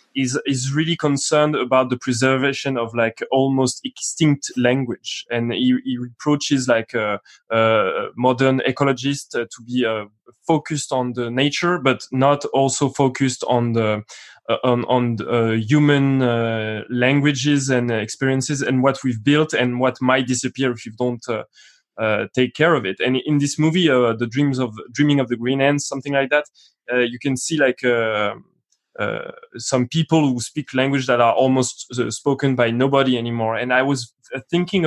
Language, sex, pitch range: English, male, 125-145 Hz